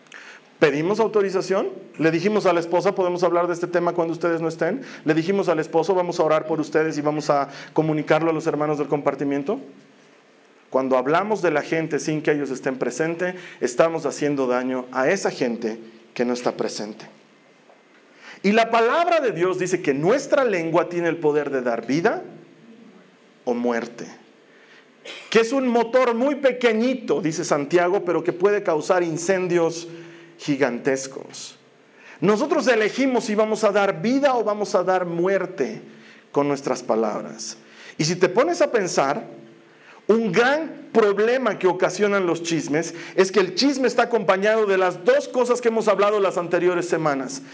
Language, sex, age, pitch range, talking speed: Spanish, male, 40-59, 150-205 Hz, 165 wpm